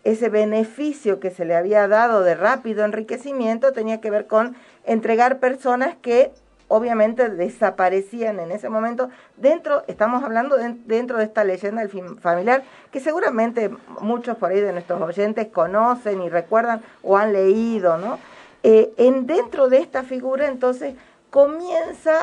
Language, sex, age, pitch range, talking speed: Spanish, female, 50-69, 195-255 Hz, 150 wpm